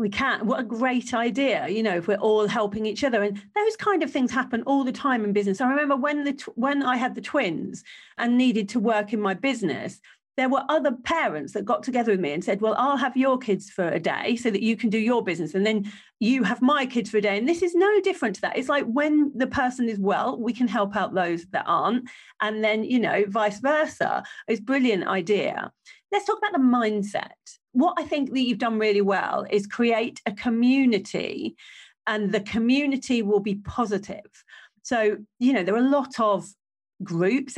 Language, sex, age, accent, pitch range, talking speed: English, female, 40-59, British, 205-260 Hz, 220 wpm